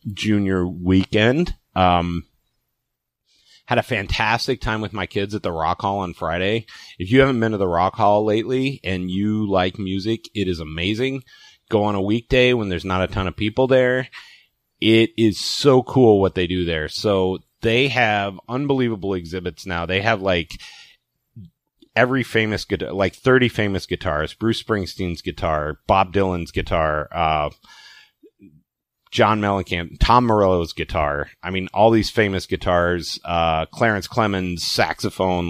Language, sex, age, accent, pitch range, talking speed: English, male, 30-49, American, 85-110 Hz, 150 wpm